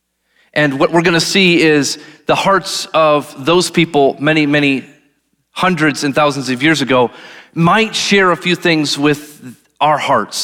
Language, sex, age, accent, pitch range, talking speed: English, male, 30-49, American, 130-185 Hz, 160 wpm